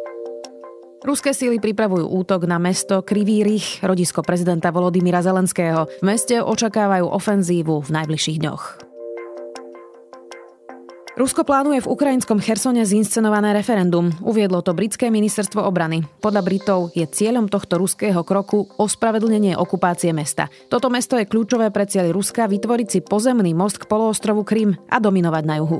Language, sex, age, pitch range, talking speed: Slovak, female, 30-49, 165-215 Hz, 135 wpm